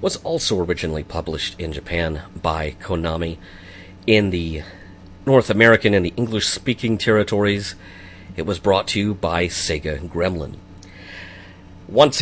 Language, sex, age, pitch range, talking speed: English, male, 40-59, 85-105 Hz, 130 wpm